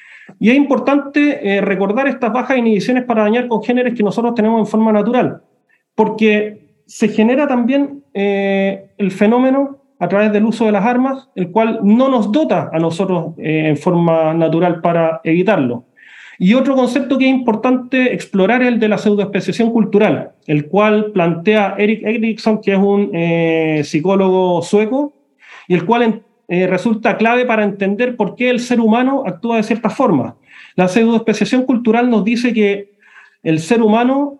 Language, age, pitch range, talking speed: Spanish, 30-49, 190-245 Hz, 165 wpm